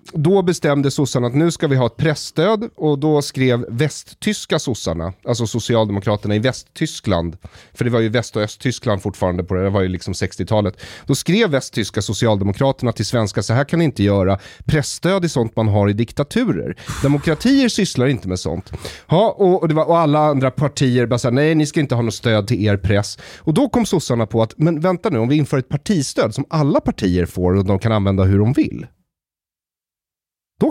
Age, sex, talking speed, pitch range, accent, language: 30-49, male, 205 wpm, 105-155 Hz, native, Swedish